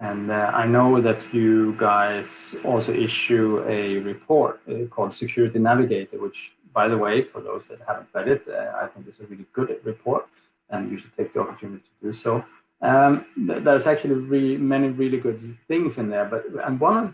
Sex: male